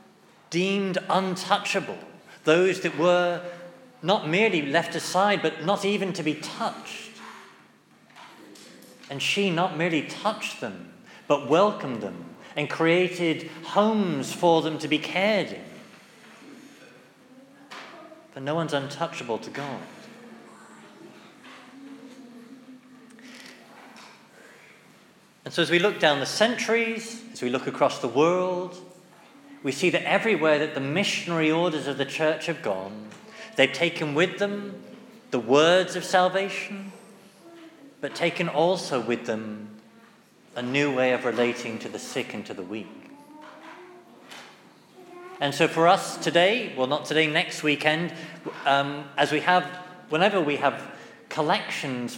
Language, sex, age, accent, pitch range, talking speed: English, male, 40-59, British, 150-205 Hz, 125 wpm